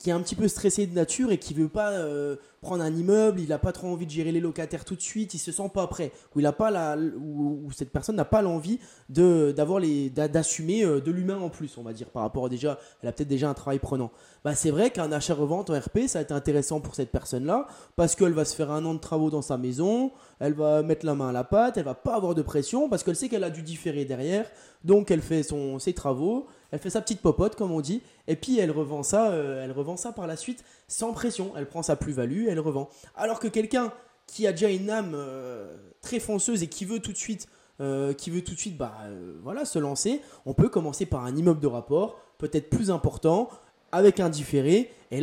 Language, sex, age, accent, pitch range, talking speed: French, male, 20-39, French, 145-205 Hz, 260 wpm